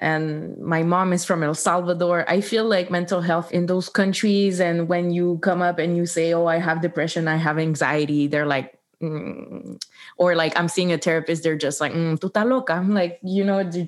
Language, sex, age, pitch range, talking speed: English, female, 20-39, 170-190 Hz, 215 wpm